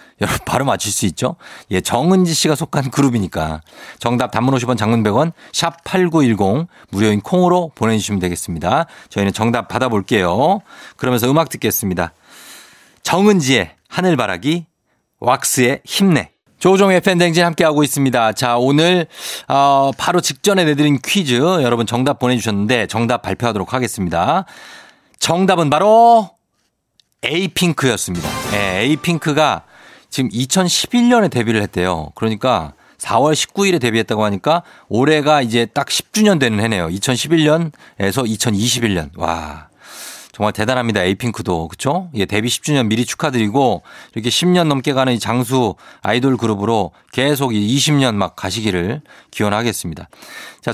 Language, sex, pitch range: Korean, male, 105-155 Hz